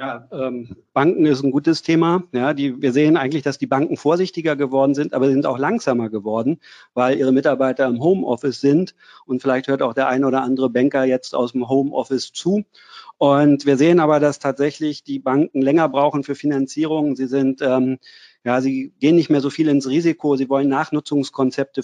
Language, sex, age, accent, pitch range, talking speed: German, male, 40-59, German, 130-150 Hz, 195 wpm